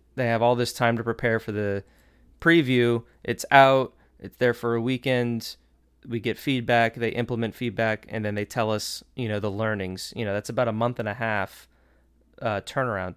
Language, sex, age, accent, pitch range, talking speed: English, male, 20-39, American, 105-125 Hz, 195 wpm